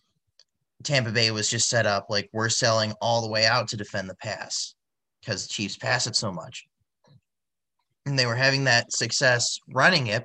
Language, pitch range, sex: English, 105-120 Hz, male